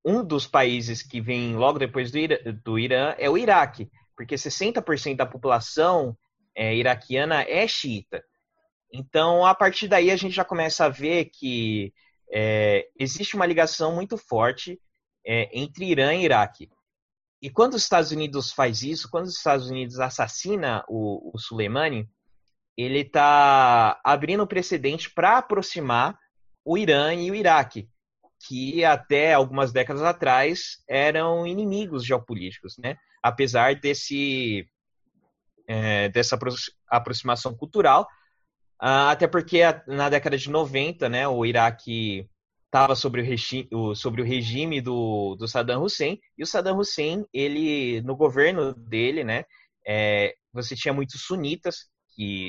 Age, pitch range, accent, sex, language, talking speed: 20-39, 115-160 Hz, Brazilian, male, Portuguese, 135 wpm